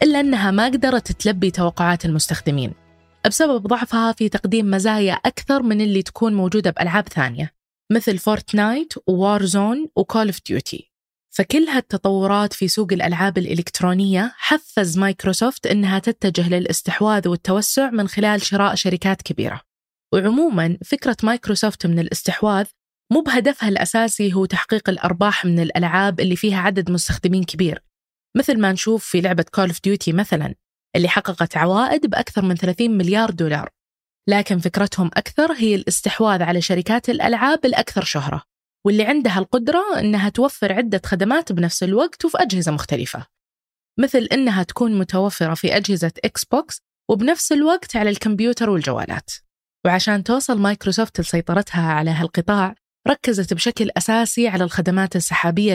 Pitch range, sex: 180-225 Hz, female